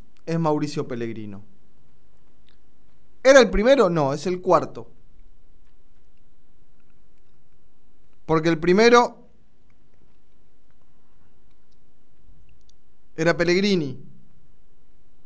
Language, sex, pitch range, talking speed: Spanish, male, 145-190 Hz, 60 wpm